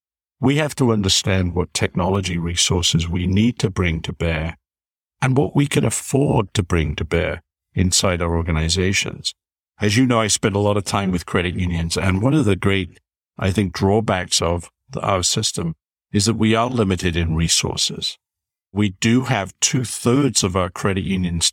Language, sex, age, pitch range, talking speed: English, male, 50-69, 90-115 Hz, 175 wpm